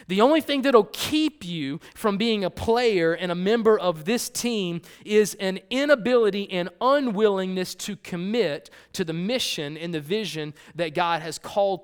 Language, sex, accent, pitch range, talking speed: English, male, American, 165-215 Hz, 165 wpm